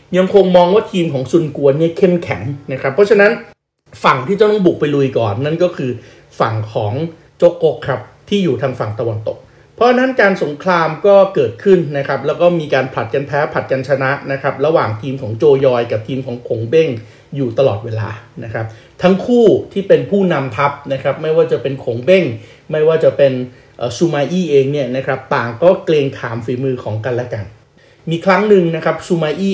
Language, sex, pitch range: Thai, male, 130-170 Hz